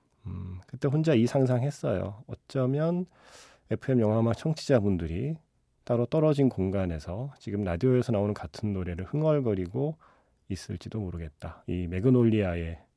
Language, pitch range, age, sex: Korean, 90-130 Hz, 40-59, male